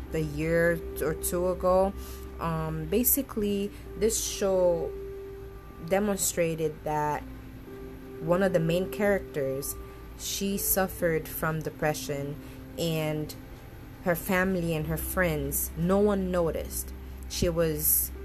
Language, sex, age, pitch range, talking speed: English, female, 20-39, 140-185 Hz, 100 wpm